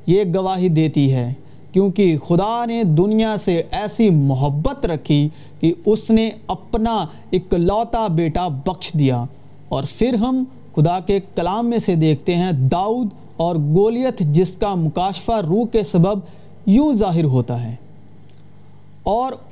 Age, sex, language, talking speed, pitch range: 40-59, male, Urdu, 135 wpm, 150-215 Hz